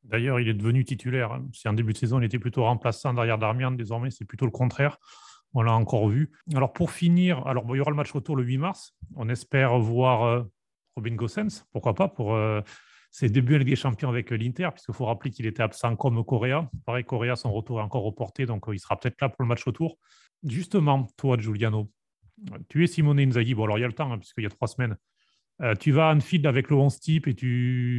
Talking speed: 225 wpm